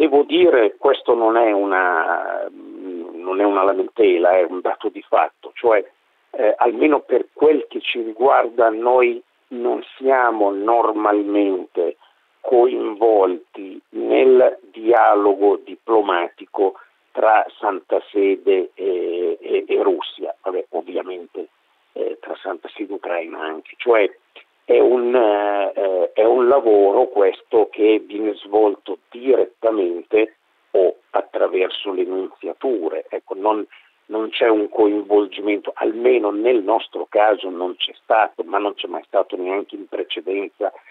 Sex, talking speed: male, 120 wpm